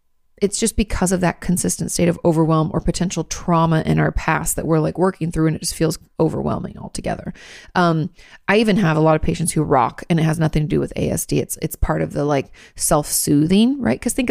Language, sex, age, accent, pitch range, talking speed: English, female, 30-49, American, 155-180 Hz, 225 wpm